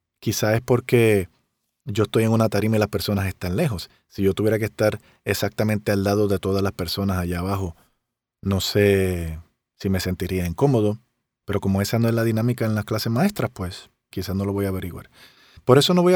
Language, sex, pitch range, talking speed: Spanish, male, 100-130 Hz, 205 wpm